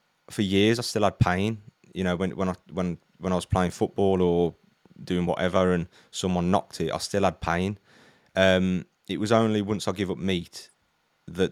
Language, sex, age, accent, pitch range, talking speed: English, male, 20-39, British, 85-100 Hz, 200 wpm